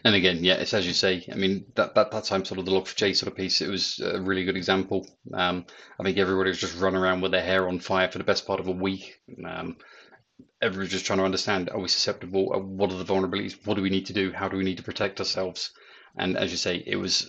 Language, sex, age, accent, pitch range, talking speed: English, male, 30-49, British, 95-100 Hz, 280 wpm